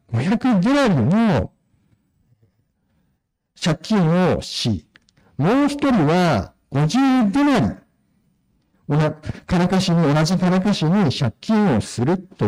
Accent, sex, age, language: native, male, 60-79, Japanese